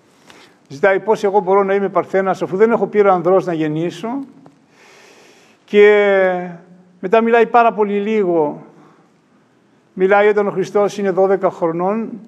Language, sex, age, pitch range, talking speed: Greek, male, 50-69, 180-210 Hz, 125 wpm